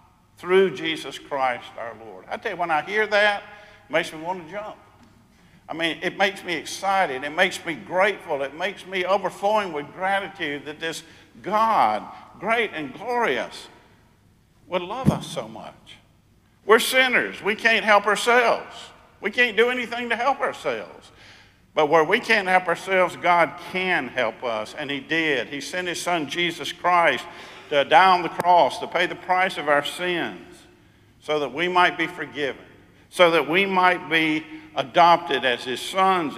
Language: English